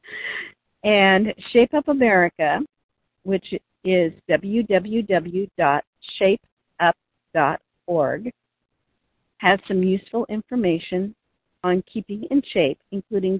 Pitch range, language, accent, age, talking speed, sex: 165-215 Hz, English, American, 50-69, 65 wpm, female